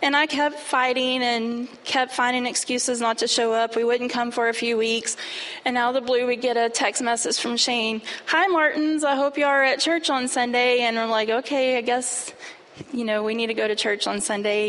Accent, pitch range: American, 230-305 Hz